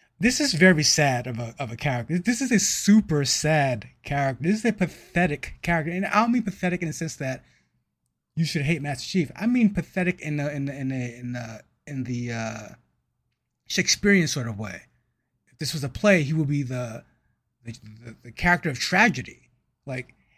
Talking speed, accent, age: 200 wpm, American, 30-49